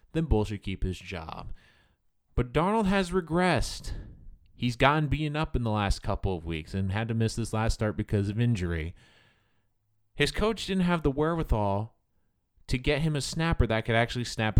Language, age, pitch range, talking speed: English, 30-49, 100-145 Hz, 185 wpm